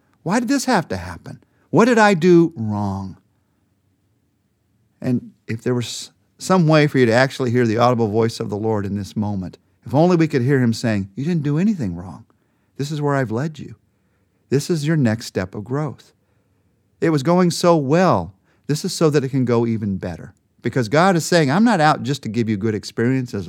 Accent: American